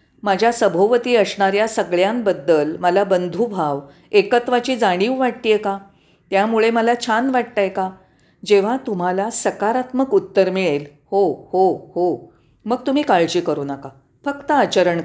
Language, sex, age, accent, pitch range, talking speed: Marathi, female, 40-59, native, 180-240 Hz, 125 wpm